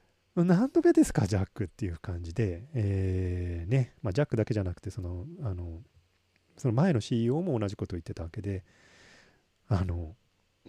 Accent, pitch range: native, 95-145 Hz